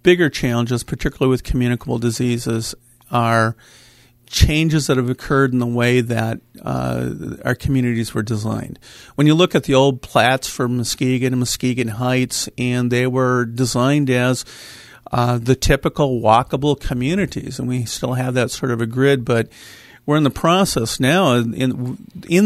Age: 40-59